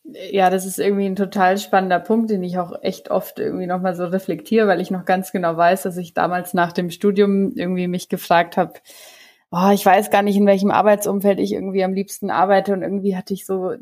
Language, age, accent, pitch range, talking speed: German, 20-39, German, 185-205 Hz, 215 wpm